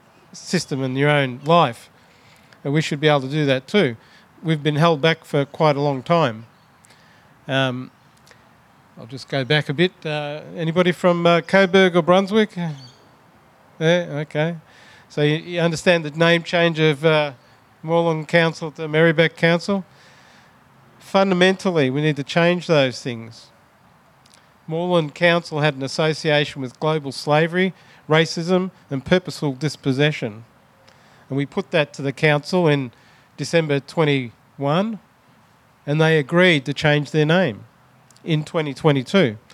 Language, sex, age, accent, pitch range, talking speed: English, male, 40-59, Australian, 140-170 Hz, 140 wpm